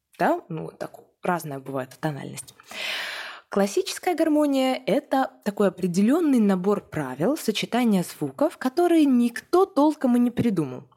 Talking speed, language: 115 wpm, Russian